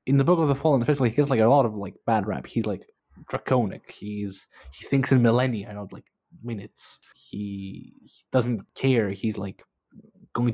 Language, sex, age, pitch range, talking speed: English, male, 20-39, 105-130 Hz, 195 wpm